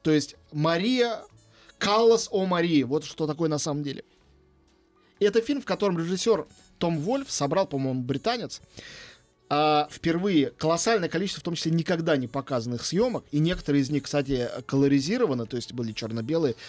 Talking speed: 150 wpm